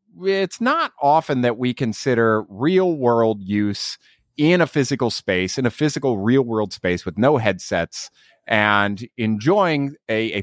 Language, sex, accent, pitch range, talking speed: English, male, American, 130-190 Hz, 150 wpm